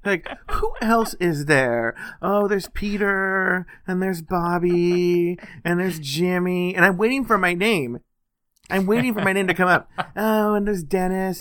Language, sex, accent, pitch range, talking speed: English, male, American, 125-180 Hz, 170 wpm